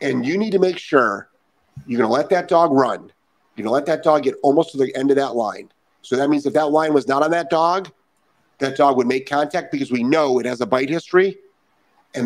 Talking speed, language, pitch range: 255 wpm, English, 140-195 Hz